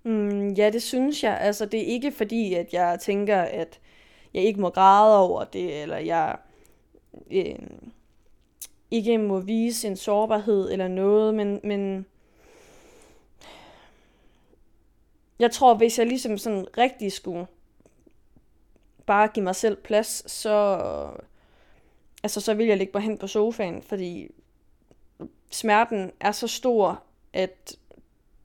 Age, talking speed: 20-39, 130 wpm